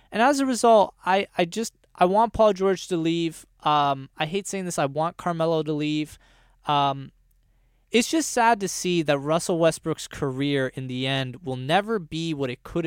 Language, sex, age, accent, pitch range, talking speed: English, male, 20-39, American, 135-185 Hz, 195 wpm